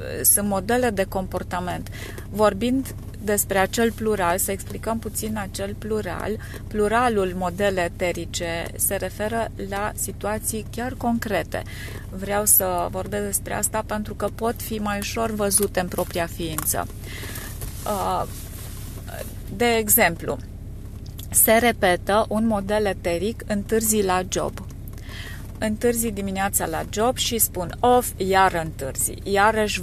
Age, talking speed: 30-49, 115 wpm